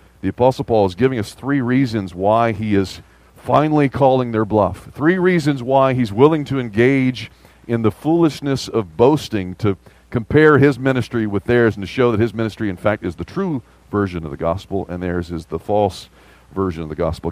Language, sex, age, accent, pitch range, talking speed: English, male, 40-59, American, 95-130 Hz, 200 wpm